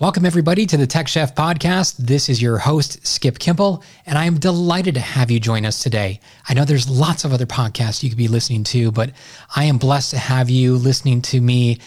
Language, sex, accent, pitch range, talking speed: English, male, American, 120-155 Hz, 225 wpm